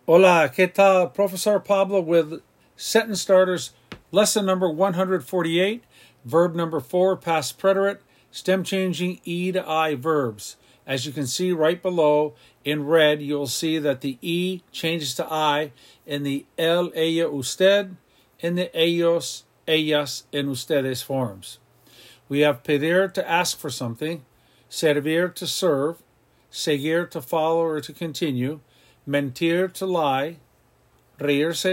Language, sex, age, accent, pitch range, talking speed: English, male, 50-69, American, 140-175 Hz, 130 wpm